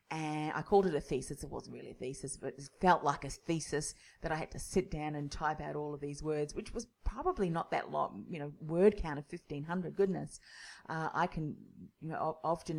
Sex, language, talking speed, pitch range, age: female, English, 230 wpm, 150-195 Hz, 30-49